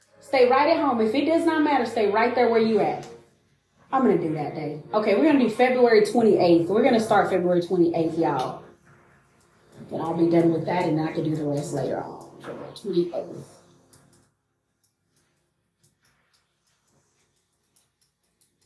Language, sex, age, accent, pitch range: English, female, 30-49, American, 205-285 Hz